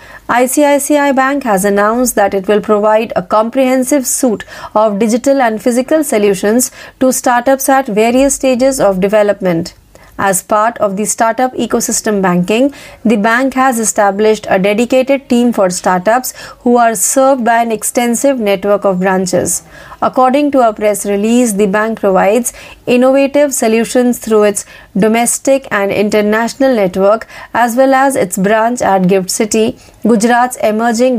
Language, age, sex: Marathi, 30-49, female